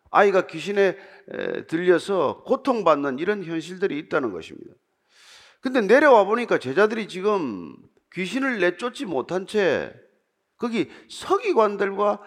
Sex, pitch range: male, 170-280 Hz